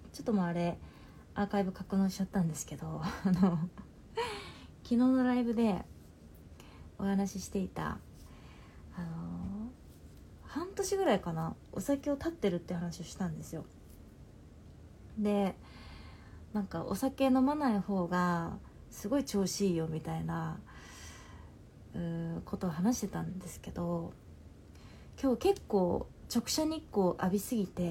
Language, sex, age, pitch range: Japanese, female, 20-39, 160-235 Hz